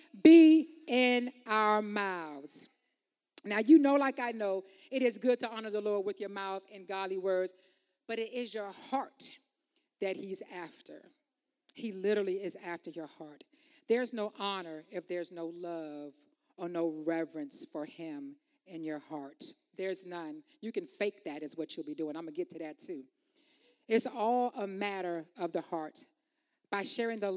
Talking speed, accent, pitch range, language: 175 wpm, American, 175-280 Hz, English